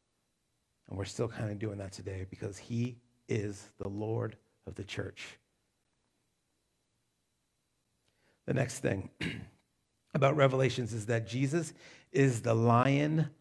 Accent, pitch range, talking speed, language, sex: American, 115-150 Hz, 120 wpm, English, male